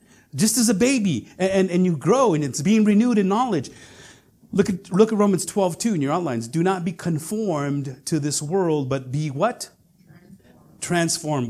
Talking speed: 175 wpm